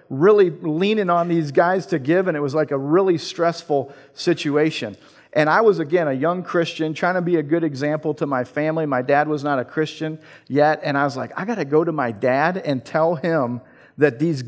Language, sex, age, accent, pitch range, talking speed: English, male, 40-59, American, 130-165 Hz, 225 wpm